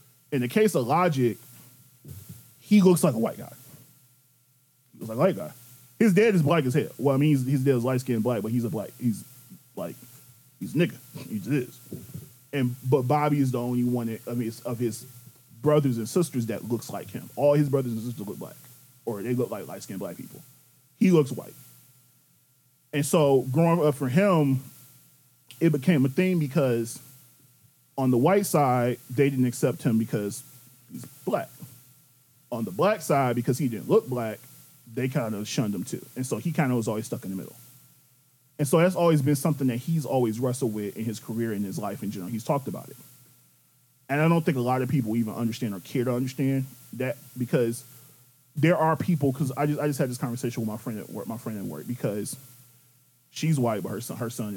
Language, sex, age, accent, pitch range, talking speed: English, male, 20-39, American, 120-145 Hz, 210 wpm